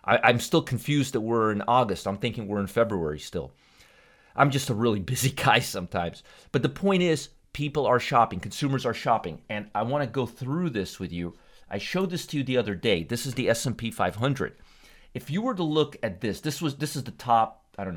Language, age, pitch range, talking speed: English, 40-59, 100-145 Hz, 225 wpm